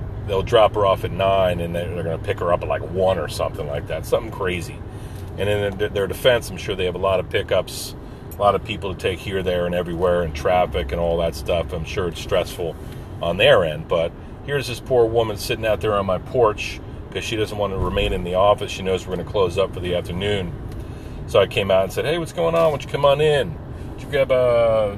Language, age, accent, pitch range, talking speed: English, 40-59, American, 90-115 Hz, 250 wpm